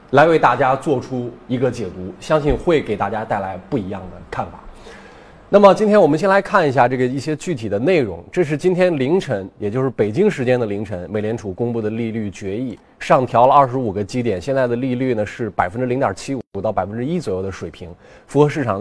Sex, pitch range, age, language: male, 110-155 Hz, 20-39, Chinese